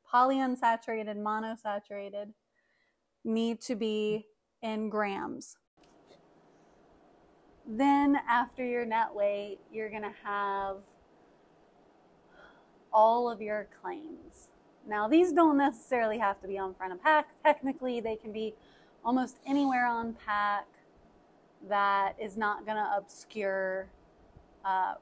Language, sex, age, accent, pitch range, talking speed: English, female, 30-49, American, 205-250 Hz, 110 wpm